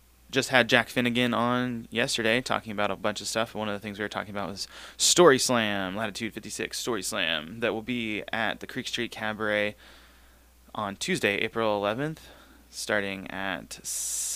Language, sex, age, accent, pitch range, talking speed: English, male, 20-39, American, 95-115 Hz, 170 wpm